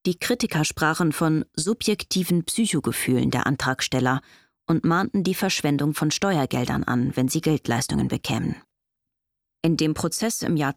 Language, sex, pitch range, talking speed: German, female, 135-175 Hz, 135 wpm